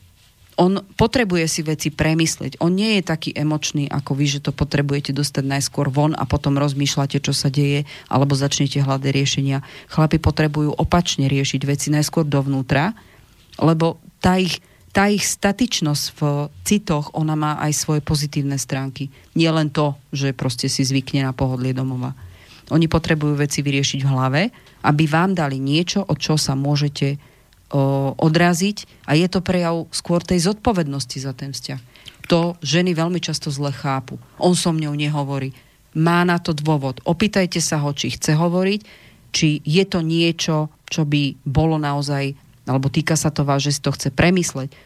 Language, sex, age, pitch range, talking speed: Slovak, female, 40-59, 140-170 Hz, 160 wpm